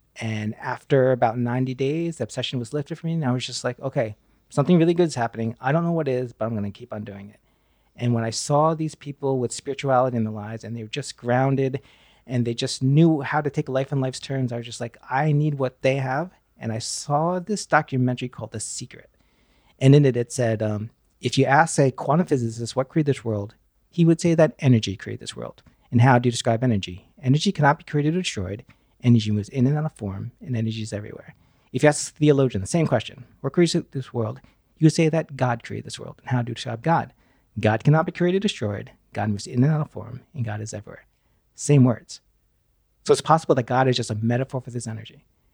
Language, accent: English, American